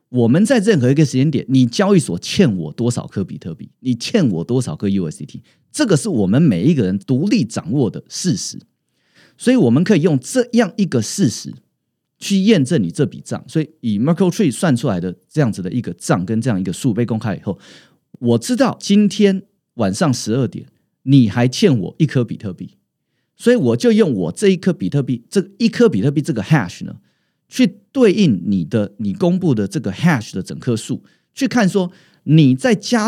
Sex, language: male, Chinese